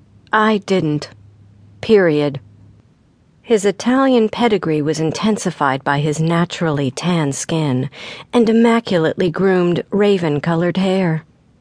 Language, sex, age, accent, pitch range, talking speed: English, female, 50-69, American, 155-215 Hz, 95 wpm